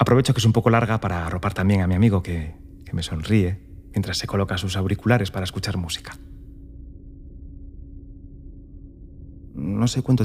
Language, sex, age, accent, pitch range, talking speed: Spanish, male, 30-49, Spanish, 90-105 Hz, 160 wpm